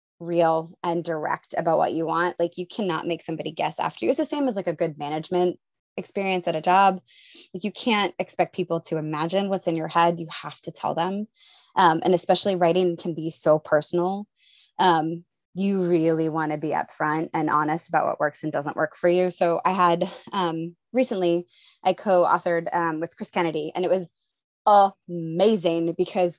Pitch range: 165-235 Hz